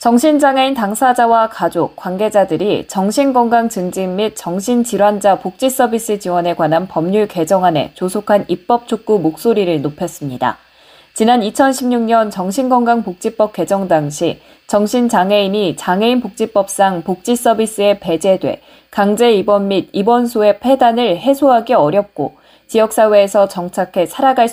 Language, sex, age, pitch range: Korean, female, 20-39, 180-235 Hz